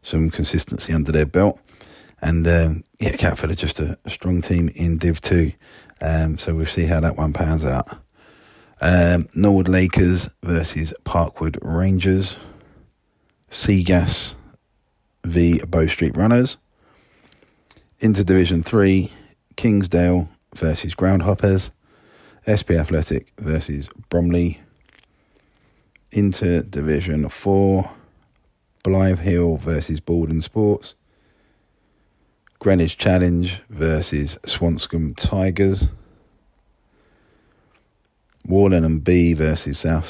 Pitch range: 80-95 Hz